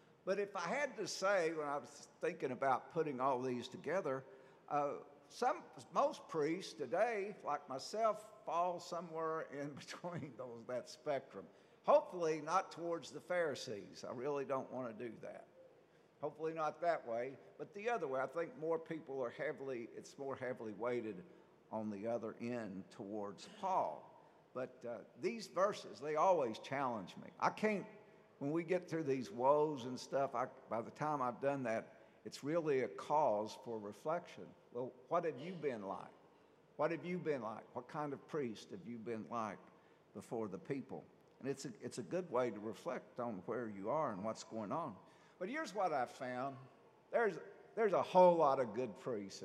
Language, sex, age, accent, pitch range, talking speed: English, male, 50-69, American, 120-165 Hz, 175 wpm